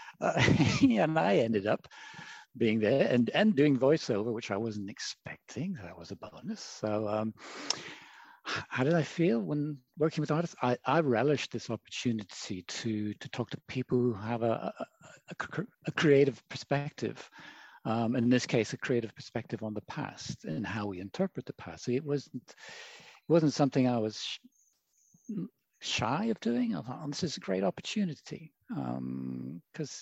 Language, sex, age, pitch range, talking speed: English, male, 60-79, 105-145 Hz, 170 wpm